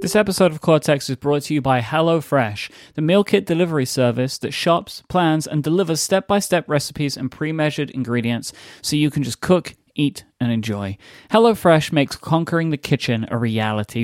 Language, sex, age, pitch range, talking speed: English, male, 30-49, 125-155 Hz, 170 wpm